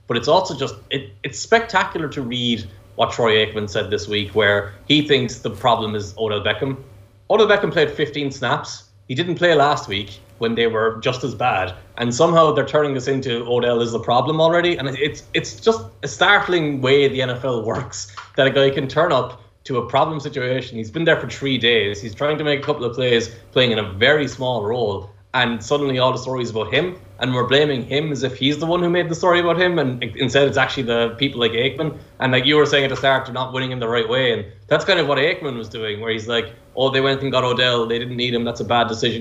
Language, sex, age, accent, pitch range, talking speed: English, male, 20-39, Irish, 110-140 Hz, 245 wpm